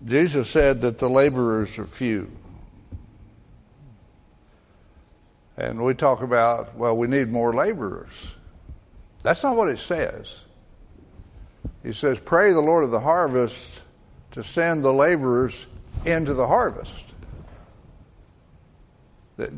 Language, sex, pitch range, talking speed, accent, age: English, male, 105-150 Hz, 115 wpm, American, 60-79